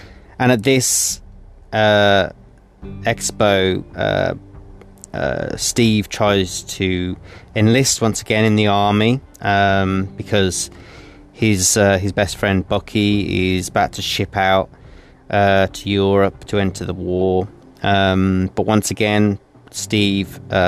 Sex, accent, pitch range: male, British, 95-110 Hz